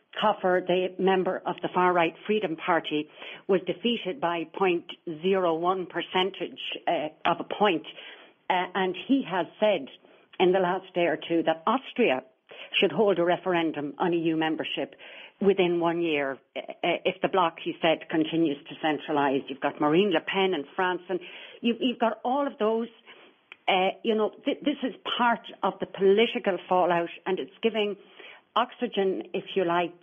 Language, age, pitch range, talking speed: English, 60-79, 170-210 Hz, 160 wpm